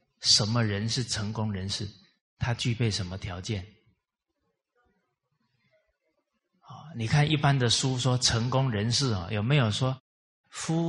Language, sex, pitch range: Chinese, male, 100-130 Hz